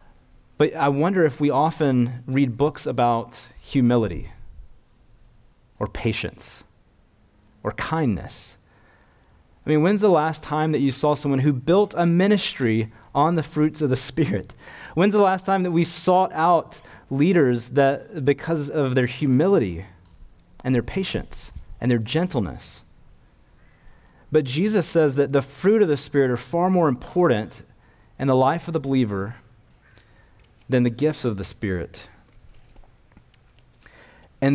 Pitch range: 115-155 Hz